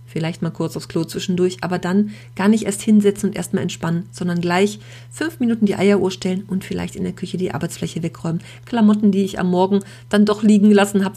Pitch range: 170-205 Hz